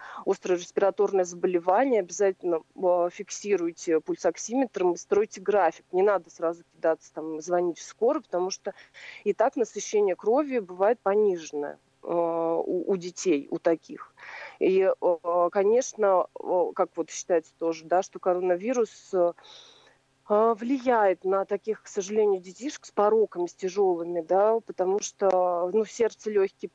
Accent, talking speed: native, 120 wpm